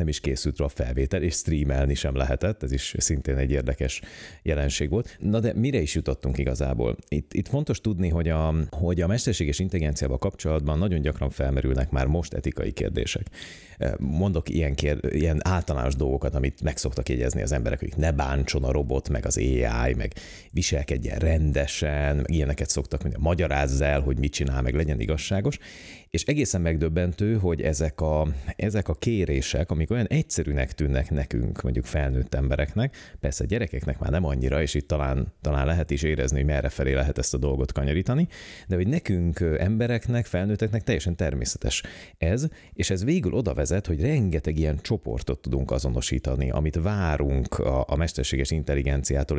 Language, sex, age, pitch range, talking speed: Hungarian, male, 30-49, 70-90 Hz, 170 wpm